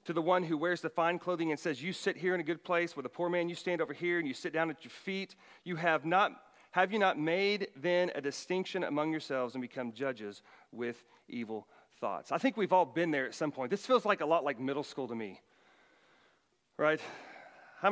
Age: 40-59